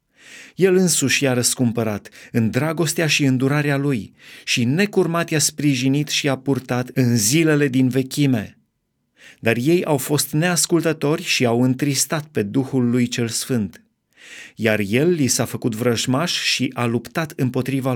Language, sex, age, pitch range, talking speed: Romanian, male, 30-49, 125-150 Hz, 145 wpm